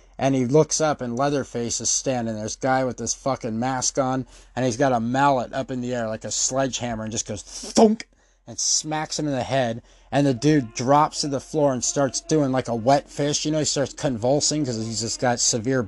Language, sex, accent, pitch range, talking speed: English, male, American, 125-145 Hz, 235 wpm